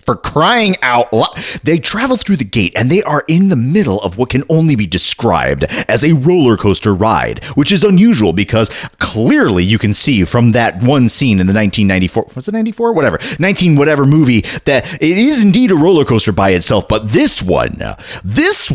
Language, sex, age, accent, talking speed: English, male, 30-49, American, 205 wpm